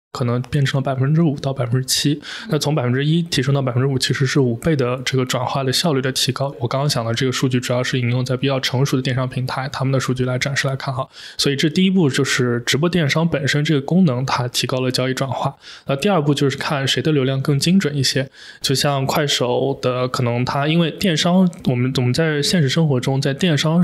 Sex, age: male, 20-39